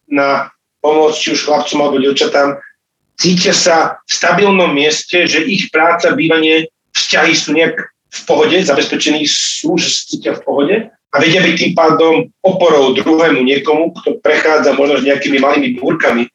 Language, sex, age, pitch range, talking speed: Slovak, male, 40-59, 140-175 Hz, 155 wpm